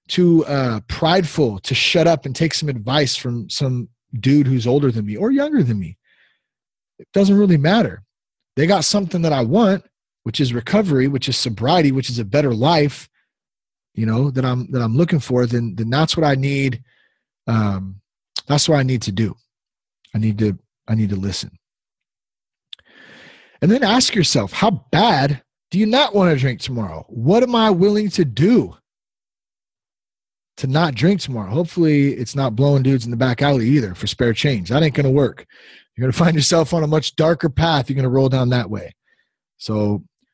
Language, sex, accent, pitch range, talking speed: English, male, American, 115-160 Hz, 190 wpm